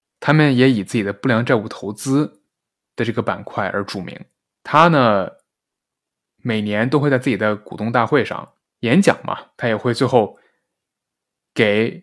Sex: male